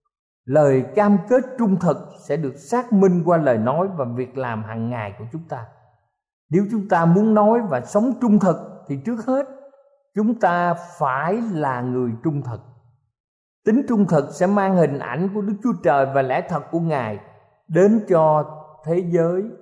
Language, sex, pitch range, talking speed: Vietnamese, male, 130-200 Hz, 180 wpm